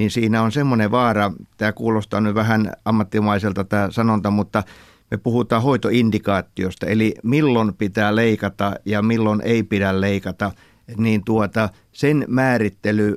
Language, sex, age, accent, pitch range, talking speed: Finnish, male, 60-79, native, 105-115 Hz, 130 wpm